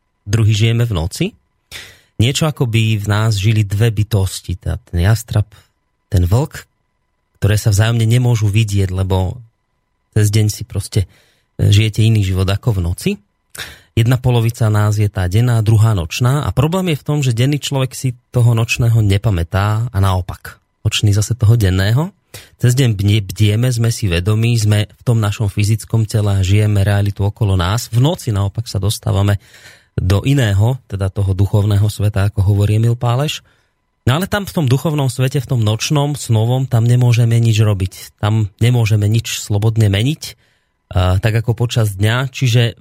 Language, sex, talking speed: Slovak, male, 165 wpm